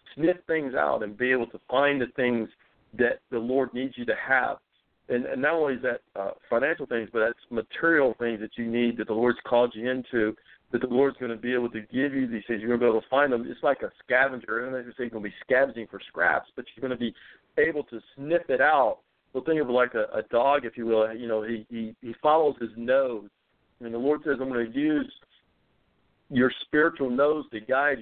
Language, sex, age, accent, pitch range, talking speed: English, male, 50-69, American, 115-130 Hz, 250 wpm